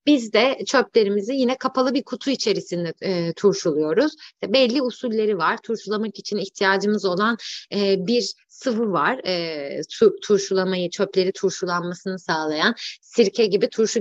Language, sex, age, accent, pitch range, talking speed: Turkish, female, 30-49, native, 195-270 Hz, 130 wpm